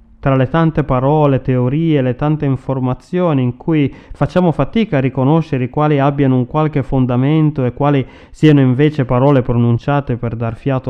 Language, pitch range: Italian, 120-145 Hz